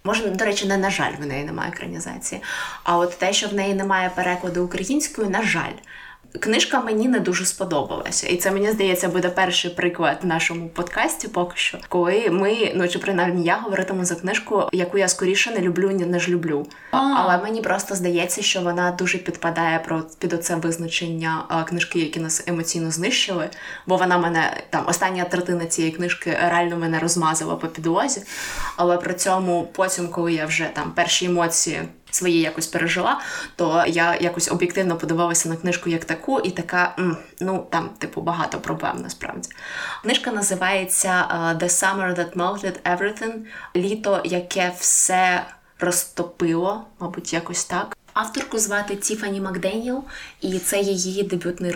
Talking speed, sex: 160 wpm, female